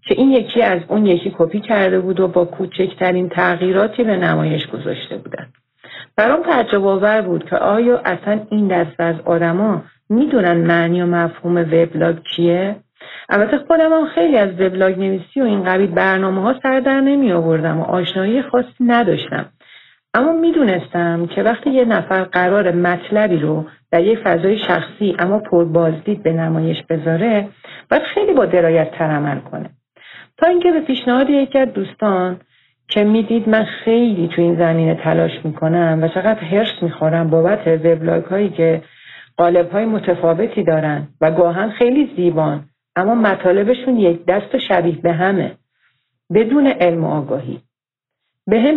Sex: female